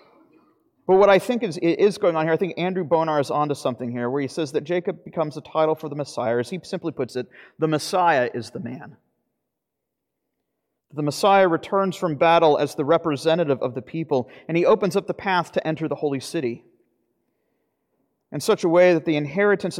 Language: English